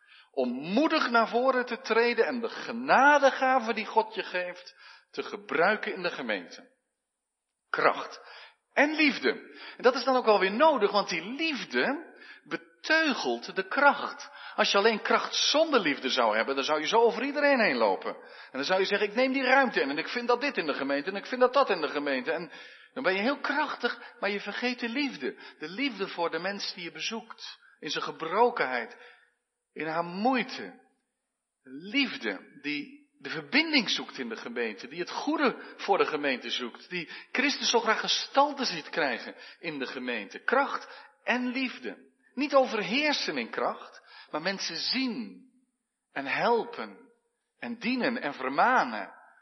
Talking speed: 175 wpm